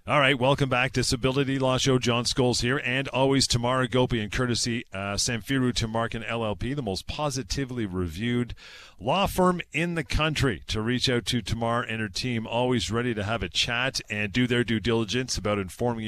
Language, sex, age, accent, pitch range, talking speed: English, male, 40-59, American, 100-130 Hz, 185 wpm